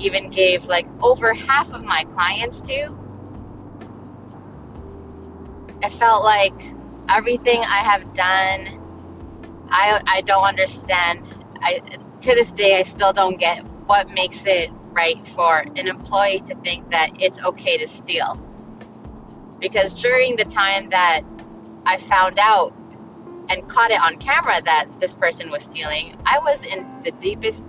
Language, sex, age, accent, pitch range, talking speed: English, female, 20-39, American, 140-215 Hz, 140 wpm